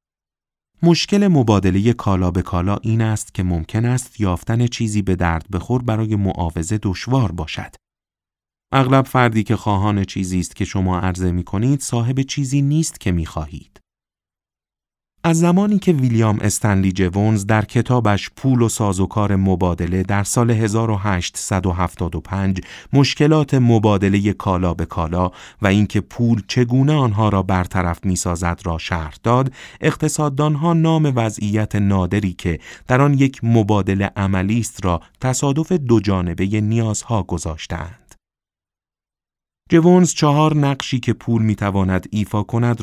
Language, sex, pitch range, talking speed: Persian, male, 90-120 Hz, 125 wpm